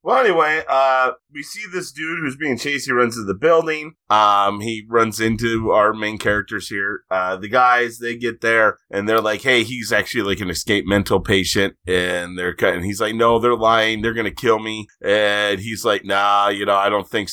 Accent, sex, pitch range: American, male, 100-125 Hz